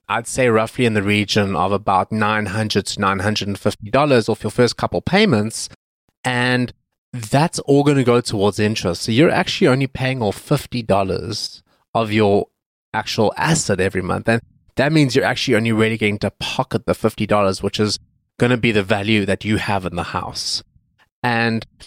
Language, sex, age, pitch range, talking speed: English, male, 20-39, 105-130 Hz, 175 wpm